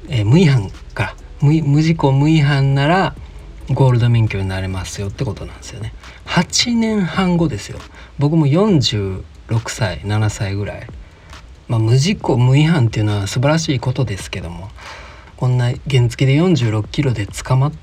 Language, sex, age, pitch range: Japanese, male, 40-59, 95-140 Hz